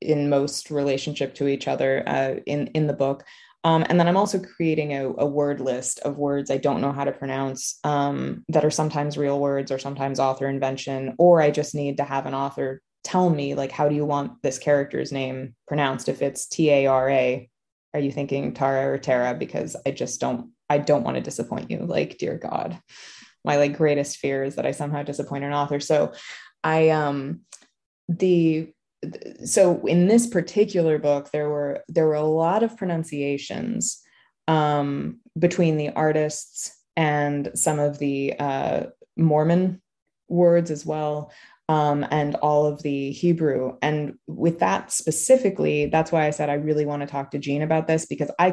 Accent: American